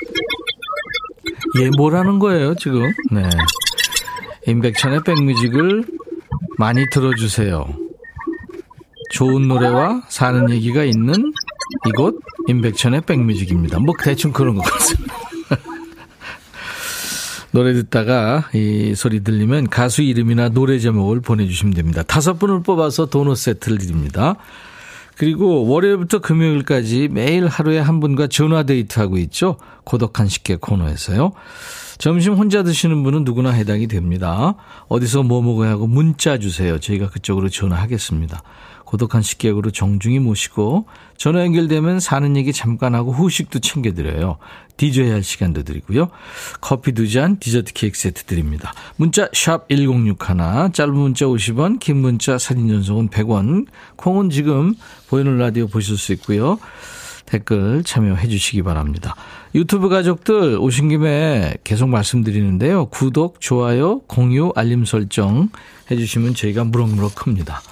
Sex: male